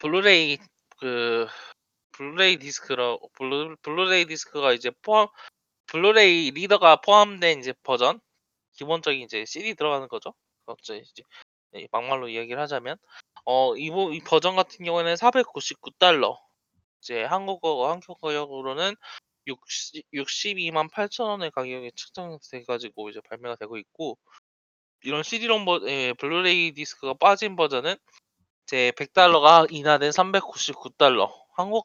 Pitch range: 130-190 Hz